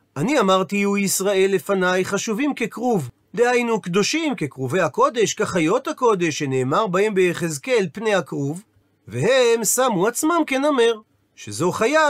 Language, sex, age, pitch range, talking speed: Hebrew, male, 40-59, 165-240 Hz, 120 wpm